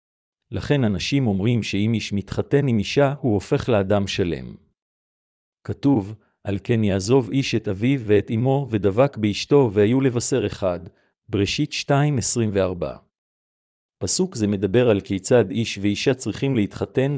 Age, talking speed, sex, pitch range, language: 50-69, 130 wpm, male, 105-130 Hz, Hebrew